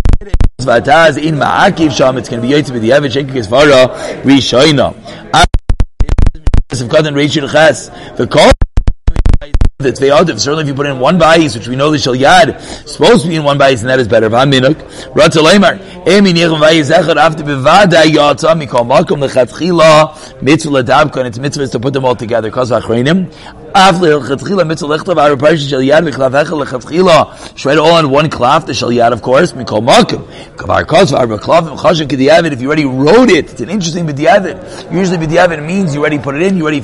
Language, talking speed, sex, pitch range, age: English, 100 wpm, male, 130-160 Hz, 30-49